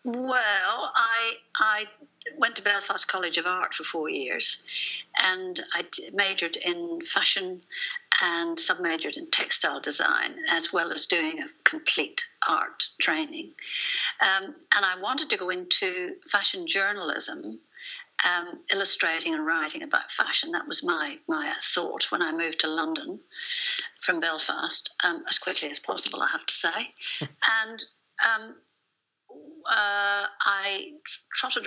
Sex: female